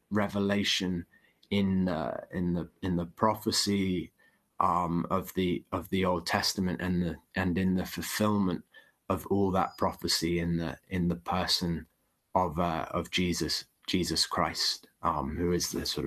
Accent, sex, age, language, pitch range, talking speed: British, male, 30-49, English, 90-105 Hz, 155 wpm